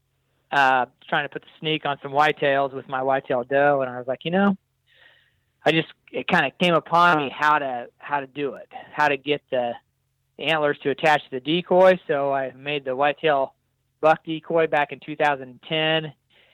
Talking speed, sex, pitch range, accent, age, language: 190 wpm, male, 130-150 Hz, American, 30-49, English